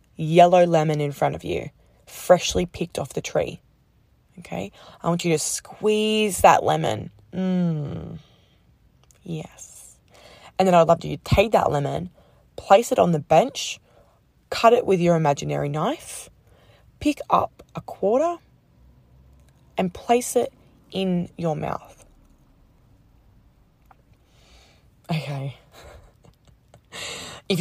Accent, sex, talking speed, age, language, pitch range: Australian, female, 115 wpm, 20-39, English, 155-195 Hz